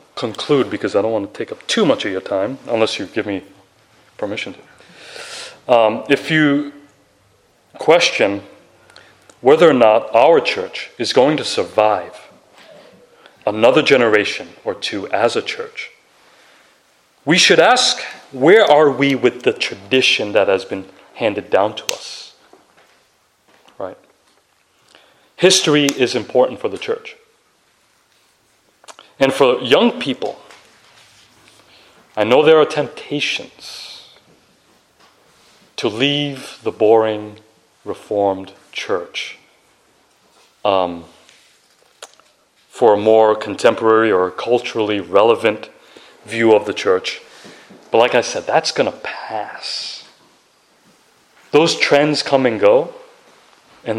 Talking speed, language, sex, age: 115 wpm, English, male, 30-49